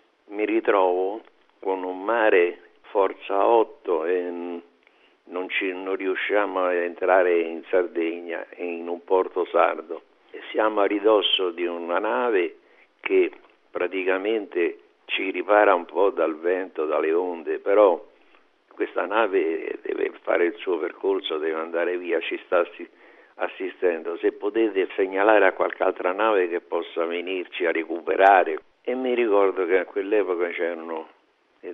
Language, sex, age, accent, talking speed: Italian, male, 60-79, native, 135 wpm